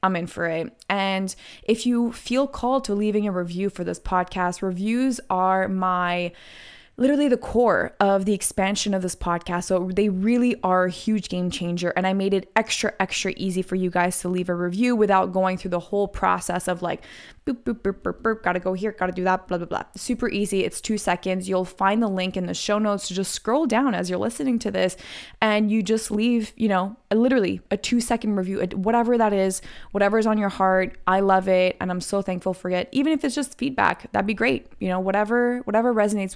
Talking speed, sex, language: 225 wpm, female, English